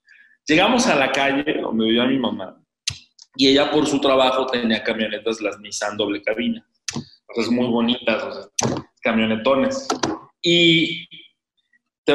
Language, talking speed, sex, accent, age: Spanish, 140 wpm, male, Mexican, 30-49